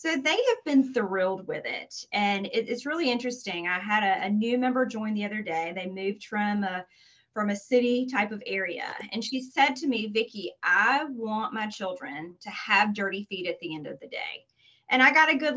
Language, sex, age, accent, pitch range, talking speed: English, female, 30-49, American, 190-255 Hz, 210 wpm